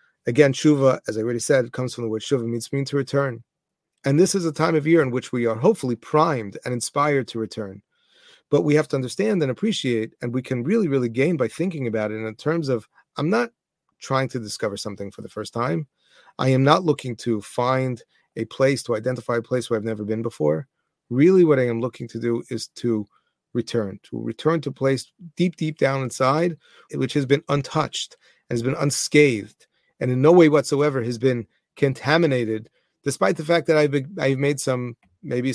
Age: 30-49